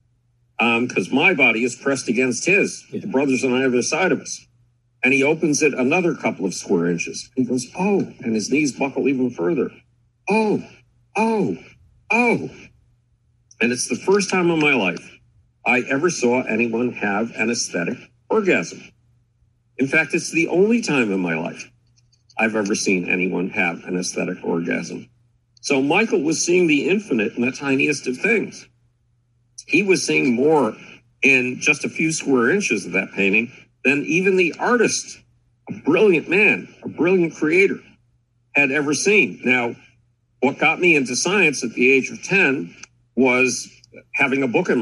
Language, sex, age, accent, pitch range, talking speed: English, male, 50-69, American, 120-135 Hz, 165 wpm